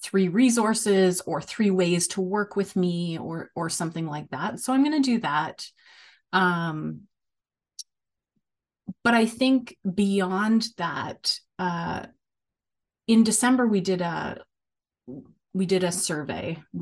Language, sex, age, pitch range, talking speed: English, female, 30-49, 165-200 Hz, 130 wpm